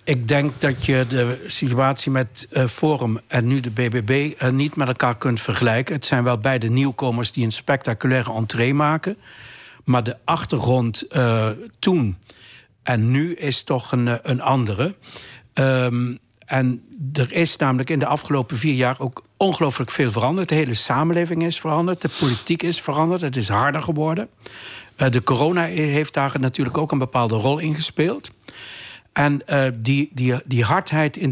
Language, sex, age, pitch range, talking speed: Dutch, male, 60-79, 125-155 Hz, 160 wpm